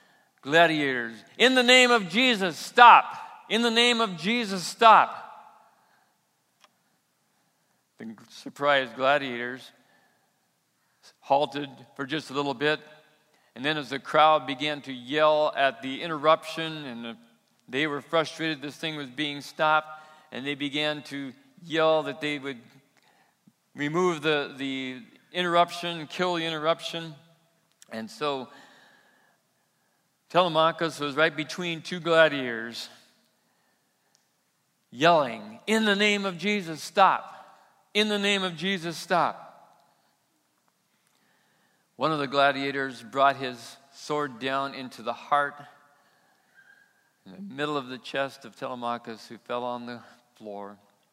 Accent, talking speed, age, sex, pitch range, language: American, 120 wpm, 50-69, male, 130-165 Hz, English